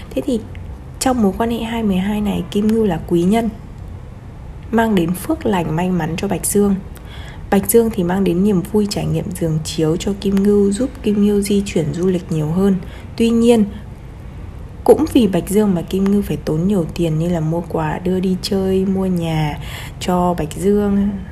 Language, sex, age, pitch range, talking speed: Vietnamese, female, 20-39, 165-215 Hz, 195 wpm